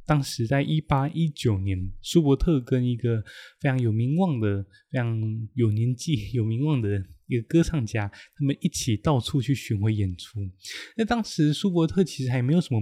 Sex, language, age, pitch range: male, Chinese, 20-39, 105-150 Hz